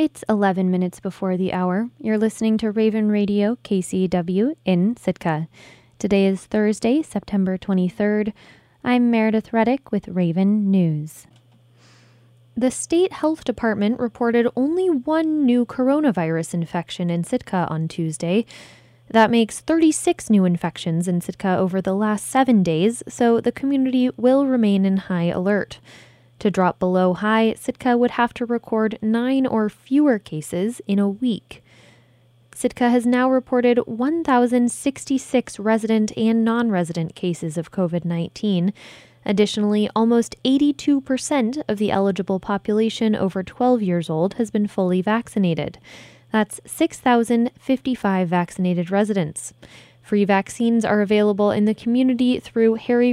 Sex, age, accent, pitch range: female, 20-39, American, 185-240 Hz